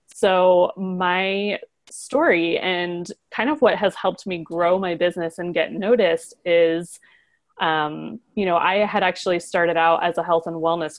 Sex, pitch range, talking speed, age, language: female, 165-195 Hz, 165 wpm, 30-49, English